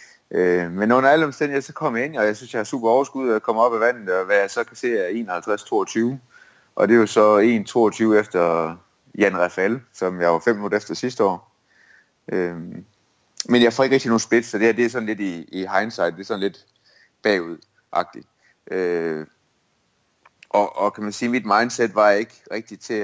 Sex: male